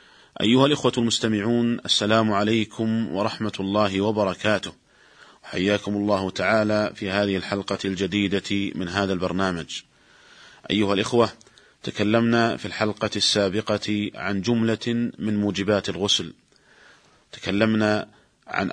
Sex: male